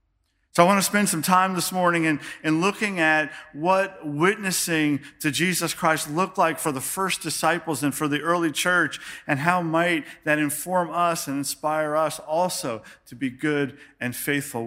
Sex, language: male, English